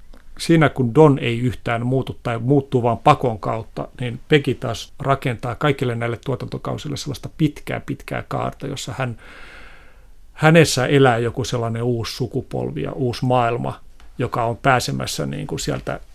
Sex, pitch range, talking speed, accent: male, 120-140 Hz, 145 wpm, native